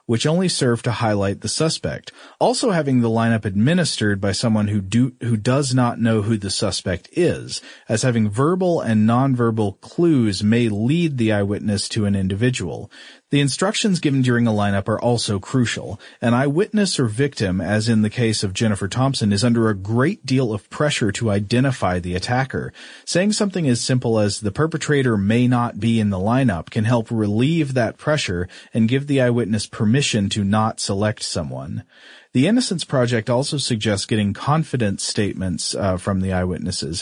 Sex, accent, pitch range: male, American, 105-130 Hz